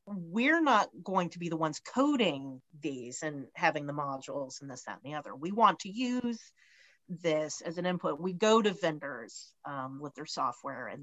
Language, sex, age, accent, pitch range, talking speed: English, female, 40-59, American, 150-195 Hz, 195 wpm